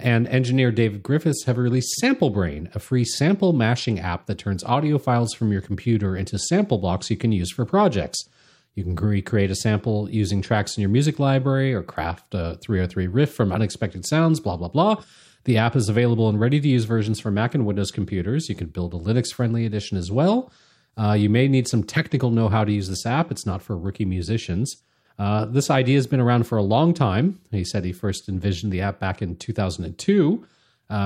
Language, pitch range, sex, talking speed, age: English, 100-125 Hz, male, 205 wpm, 30-49